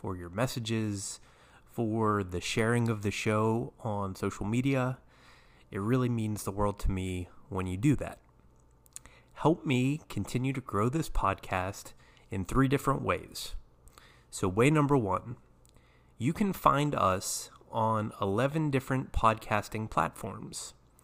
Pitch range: 100-130 Hz